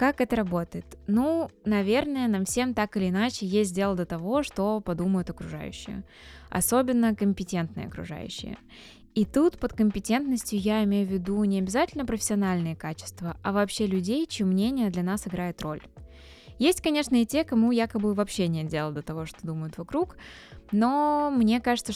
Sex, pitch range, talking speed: female, 185-235 Hz, 160 wpm